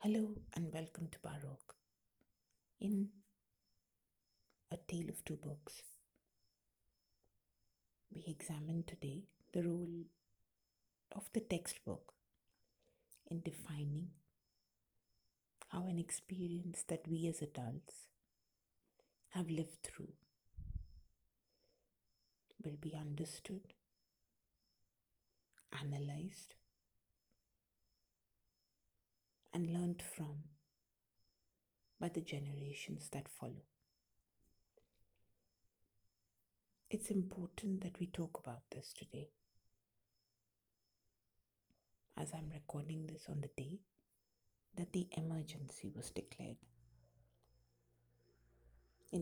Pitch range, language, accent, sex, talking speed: 100-165 Hz, English, Indian, female, 80 wpm